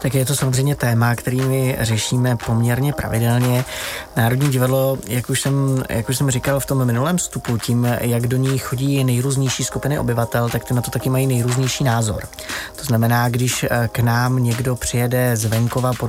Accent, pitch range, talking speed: native, 115-130 Hz, 180 wpm